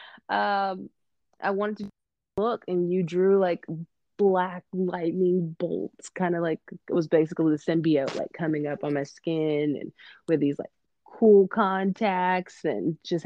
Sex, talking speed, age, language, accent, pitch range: female, 155 wpm, 20-39, English, American, 155-180 Hz